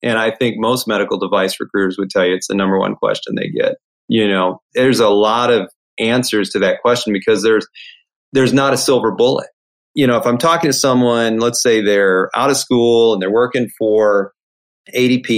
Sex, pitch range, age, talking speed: male, 100-130 Hz, 40-59, 205 wpm